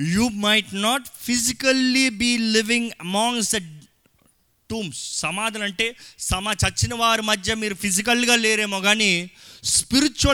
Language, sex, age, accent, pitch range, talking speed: Telugu, male, 30-49, native, 140-220 Hz, 130 wpm